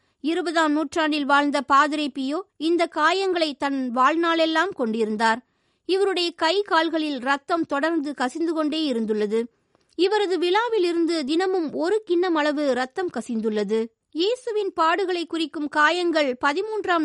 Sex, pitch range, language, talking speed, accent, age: female, 285-345 Hz, Tamil, 105 wpm, native, 20-39